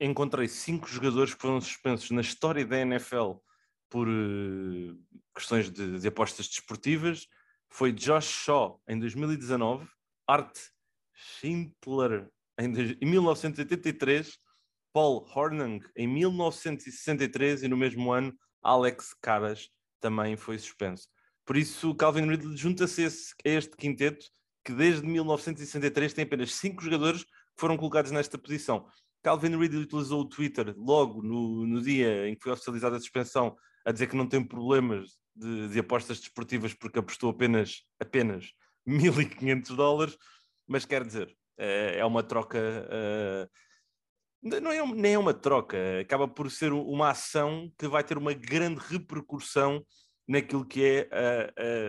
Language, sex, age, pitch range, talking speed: English, male, 20-39, 115-145 Hz, 140 wpm